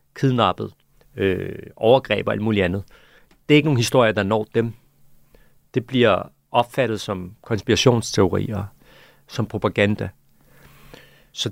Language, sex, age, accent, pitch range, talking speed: Danish, male, 40-59, native, 100-125 Hz, 120 wpm